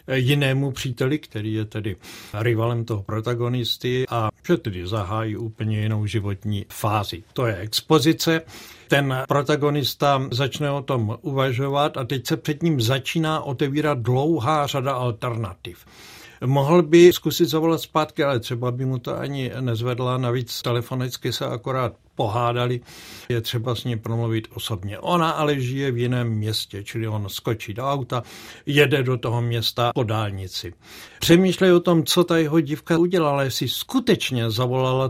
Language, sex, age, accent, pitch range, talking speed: Czech, male, 60-79, native, 115-155 Hz, 145 wpm